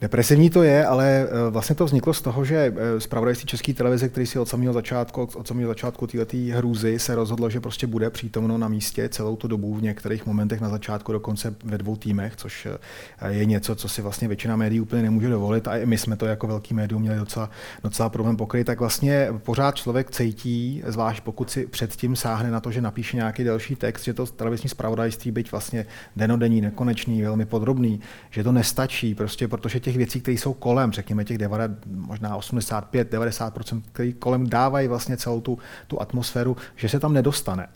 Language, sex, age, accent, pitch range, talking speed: Czech, male, 30-49, native, 110-125 Hz, 190 wpm